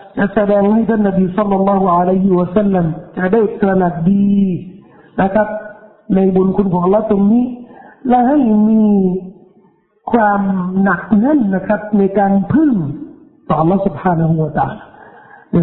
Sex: male